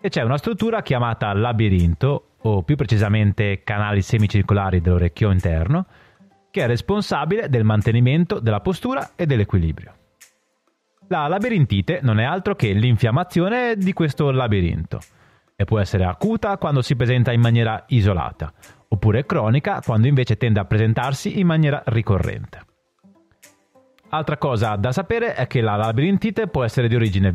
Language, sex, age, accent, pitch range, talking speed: Italian, male, 30-49, native, 105-160 Hz, 140 wpm